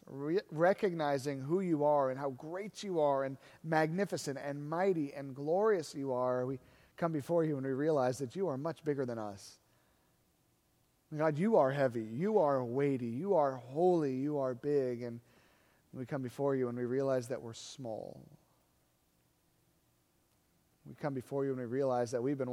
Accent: American